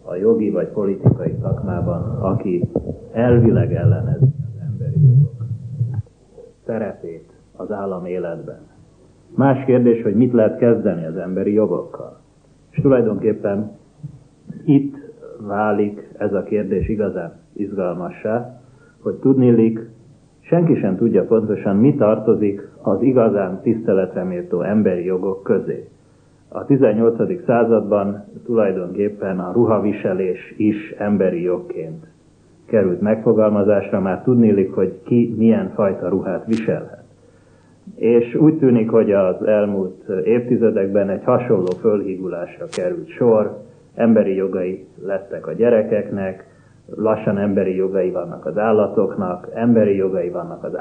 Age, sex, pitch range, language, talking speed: 30-49, male, 100-130 Hz, Hungarian, 110 wpm